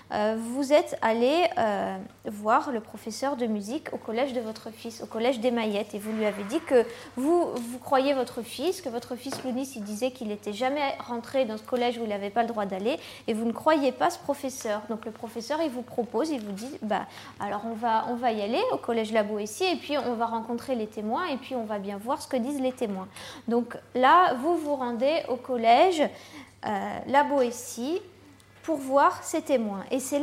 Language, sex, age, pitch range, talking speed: French, female, 20-39, 230-285 Hz, 220 wpm